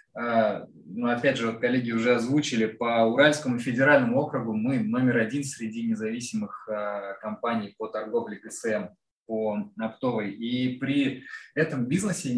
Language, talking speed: Russian, 120 wpm